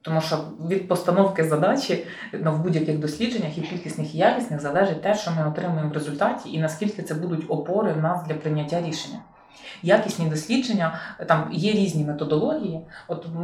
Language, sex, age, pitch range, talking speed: Ukrainian, female, 30-49, 155-195 Hz, 165 wpm